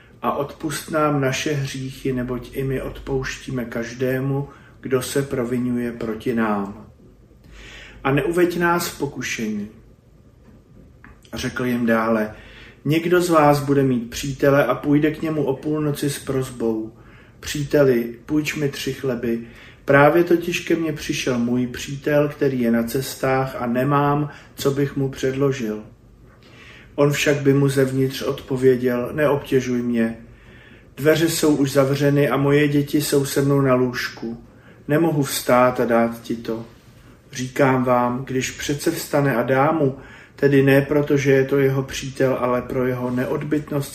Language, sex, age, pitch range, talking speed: Slovak, male, 40-59, 120-140 Hz, 145 wpm